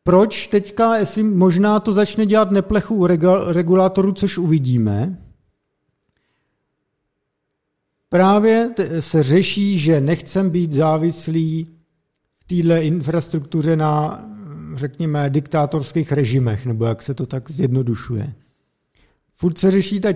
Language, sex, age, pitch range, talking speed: Czech, male, 50-69, 145-185 Hz, 105 wpm